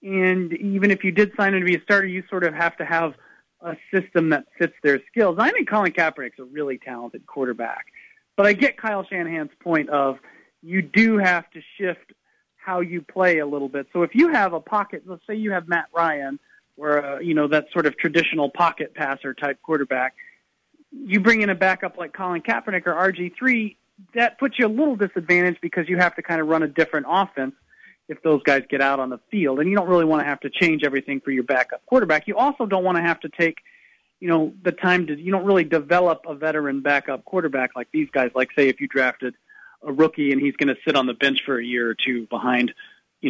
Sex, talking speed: male, 230 wpm